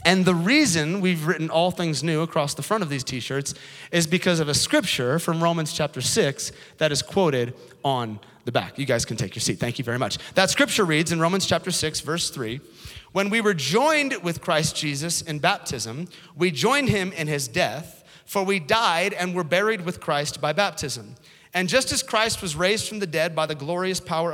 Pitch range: 150-205 Hz